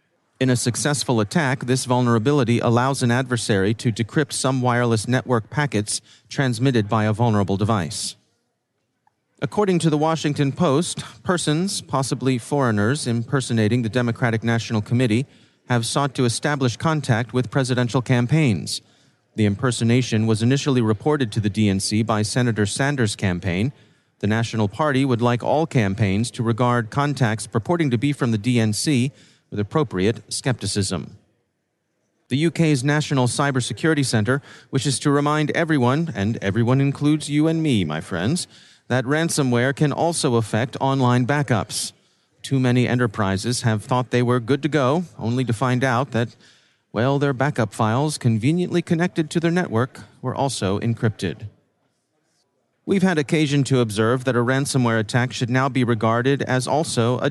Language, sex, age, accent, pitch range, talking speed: English, male, 30-49, American, 115-145 Hz, 145 wpm